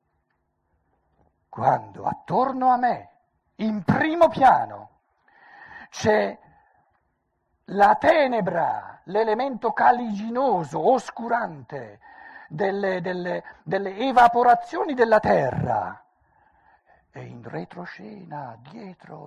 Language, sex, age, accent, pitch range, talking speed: Italian, male, 60-79, native, 140-215 Hz, 70 wpm